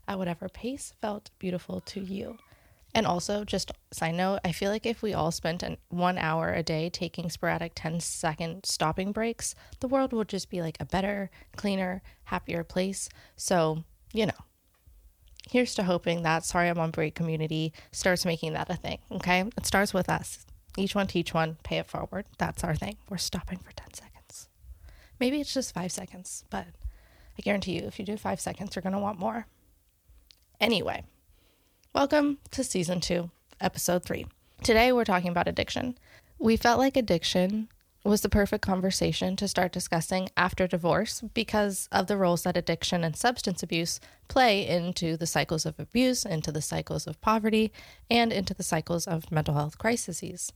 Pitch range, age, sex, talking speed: 165-205 Hz, 20-39, female, 180 wpm